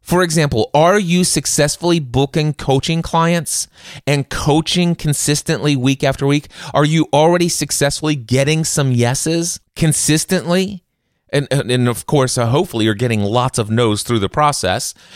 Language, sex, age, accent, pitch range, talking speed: English, male, 30-49, American, 120-160 Hz, 140 wpm